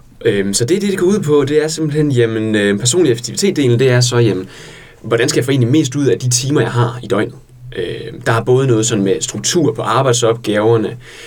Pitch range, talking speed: 110-130 Hz, 215 wpm